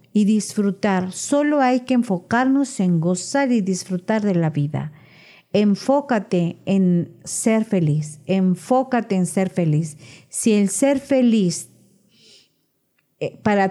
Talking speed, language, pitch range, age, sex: 115 wpm, Spanish, 170-220 Hz, 40-59, female